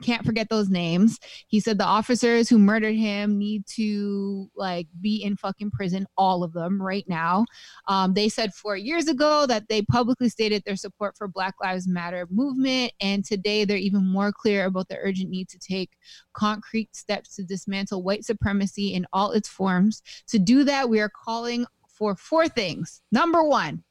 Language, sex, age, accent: English, female, 20-39, American